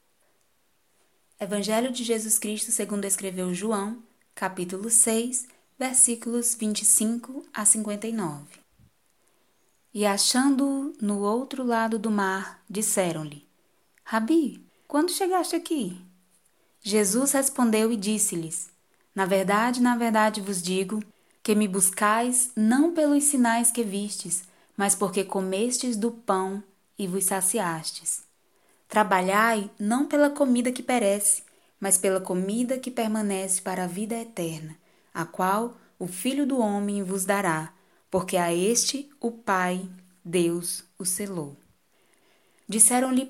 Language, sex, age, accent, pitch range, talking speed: Portuguese, female, 20-39, Brazilian, 190-240 Hz, 115 wpm